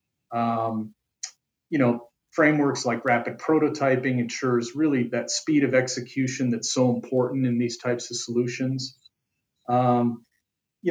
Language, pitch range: English, 120-150 Hz